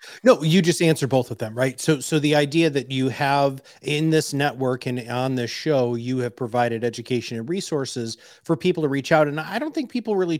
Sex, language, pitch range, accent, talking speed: male, English, 125-165 Hz, American, 225 wpm